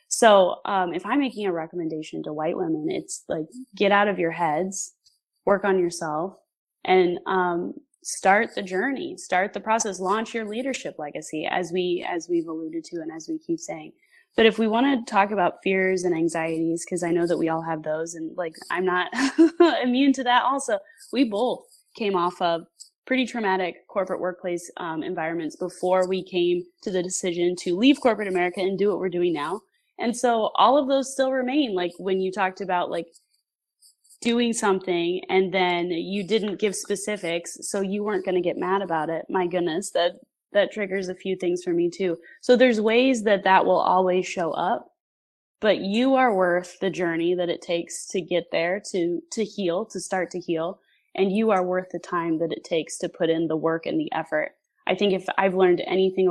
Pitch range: 175-240 Hz